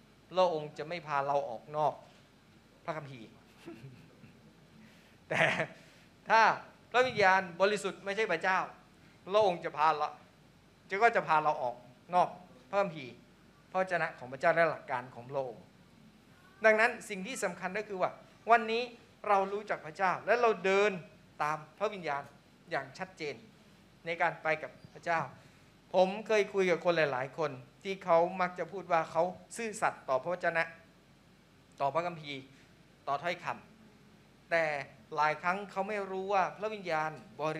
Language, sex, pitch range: Thai, male, 145-190 Hz